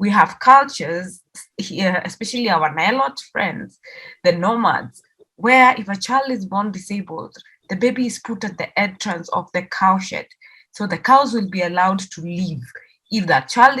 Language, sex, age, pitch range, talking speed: English, female, 20-39, 180-235 Hz, 170 wpm